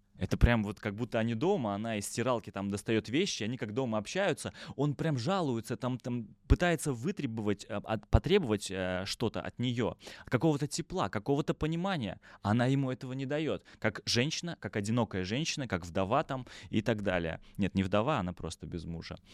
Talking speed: 170 wpm